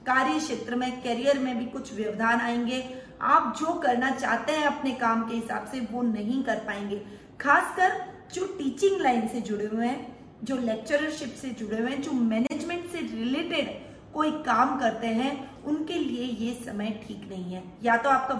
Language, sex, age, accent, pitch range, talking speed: Hindi, female, 20-39, native, 225-275 Hz, 180 wpm